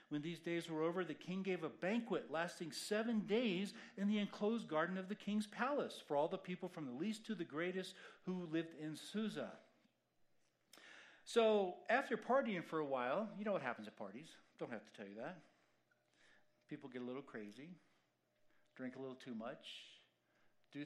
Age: 50-69